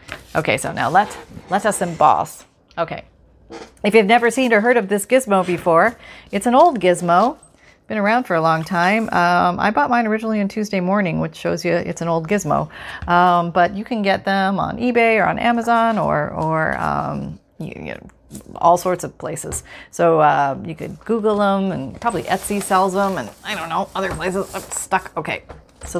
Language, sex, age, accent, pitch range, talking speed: English, female, 40-59, American, 175-225 Hz, 195 wpm